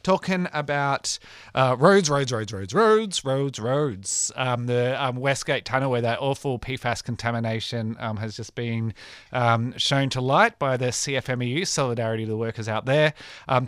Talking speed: 165 wpm